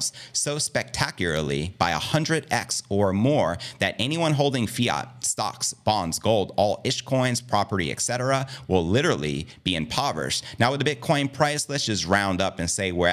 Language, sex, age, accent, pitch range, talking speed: English, male, 30-49, American, 90-130 Hz, 155 wpm